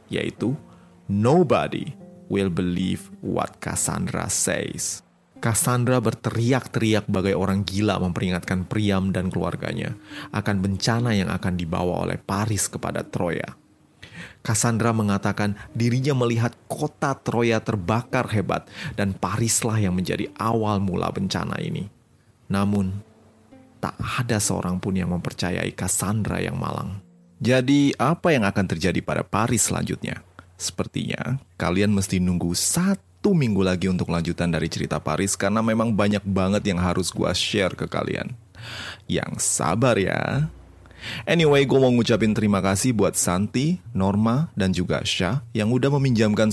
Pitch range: 95-115 Hz